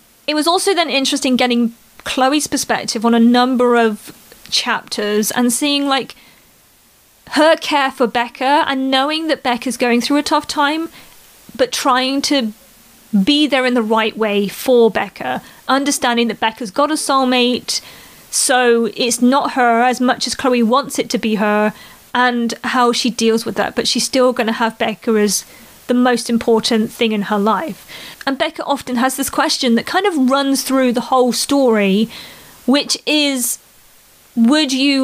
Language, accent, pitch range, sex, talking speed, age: English, British, 235-275 Hz, female, 170 wpm, 30-49